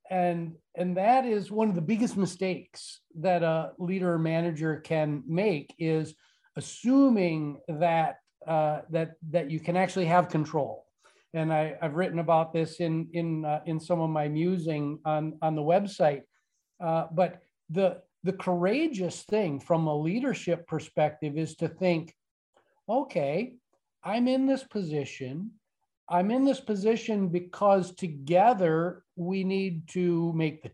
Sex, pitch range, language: male, 155-195 Hz, English